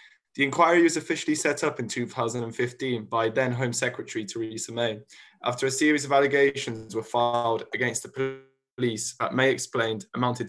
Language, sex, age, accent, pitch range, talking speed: English, male, 20-39, British, 120-145 Hz, 160 wpm